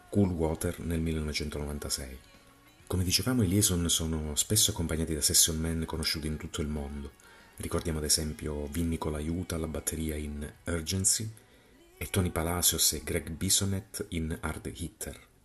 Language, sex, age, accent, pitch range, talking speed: Italian, male, 30-49, native, 75-90 Hz, 150 wpm